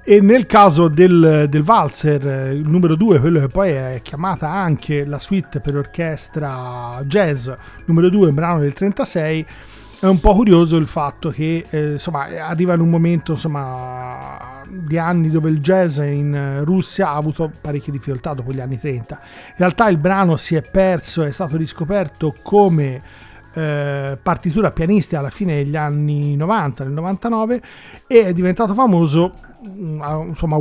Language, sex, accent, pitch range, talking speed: Italian, male, native, 145-185 Hz, 155 wpm